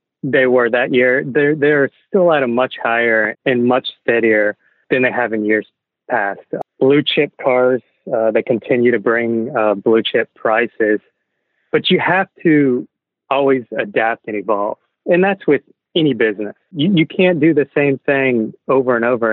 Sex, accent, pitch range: male, American, 115-145 Hz